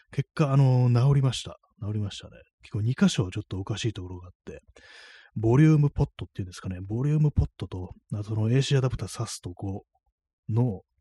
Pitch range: 95-125 Hz